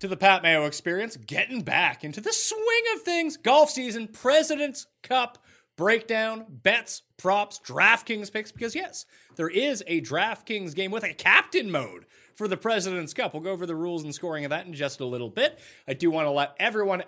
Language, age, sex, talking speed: English, 30-49, male, 195 wpm